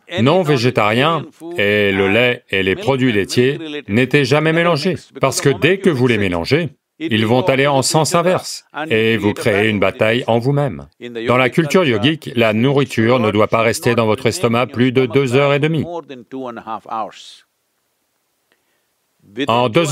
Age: 40-59